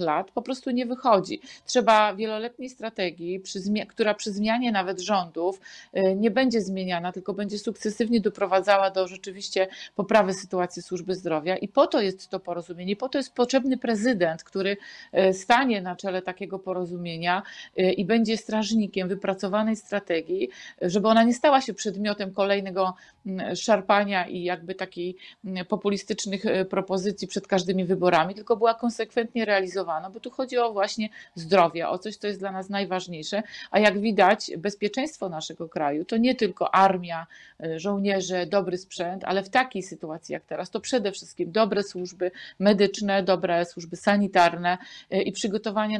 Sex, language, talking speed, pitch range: female, Polish, 145 wpm, 185-220 Hz